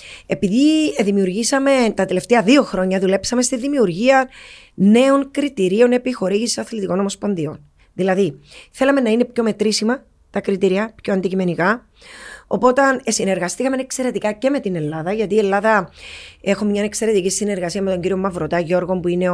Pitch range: 180-245 Hz